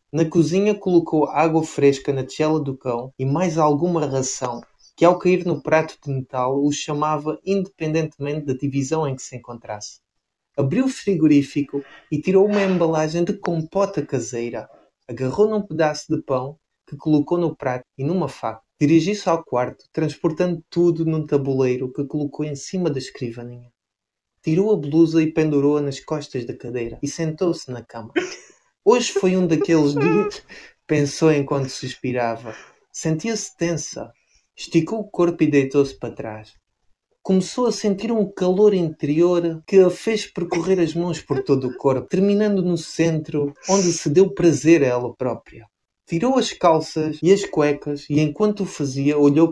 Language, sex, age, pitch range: Portuguese, male, 20-39, 135-175 Hz